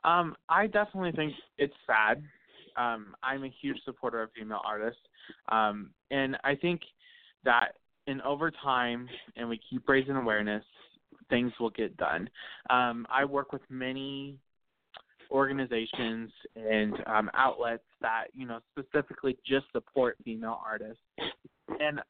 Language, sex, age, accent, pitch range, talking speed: English, male, 20-39, American, 115-140 Hz, 135 wpm